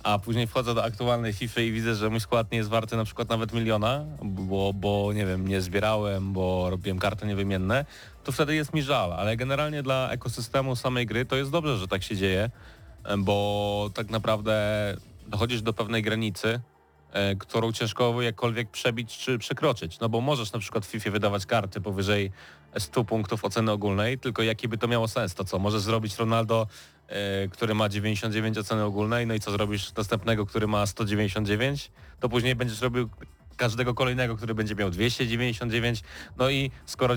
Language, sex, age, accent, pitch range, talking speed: Polish, male, 30-49, native, 100-120 Hz, 180 wpm